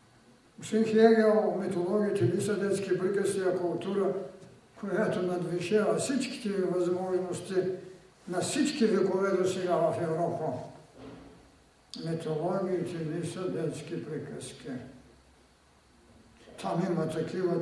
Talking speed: 95 wpm